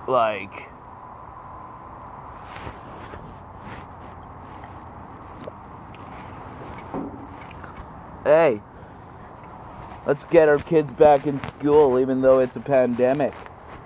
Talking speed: 60 wpm